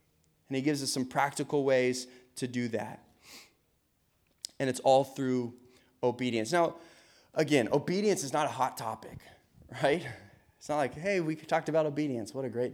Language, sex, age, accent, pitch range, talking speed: English, male, 20-39, American, 115-160 Hz, 165 wpm